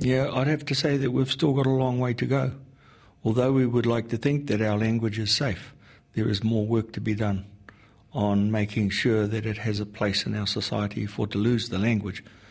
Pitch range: 95-110 Hz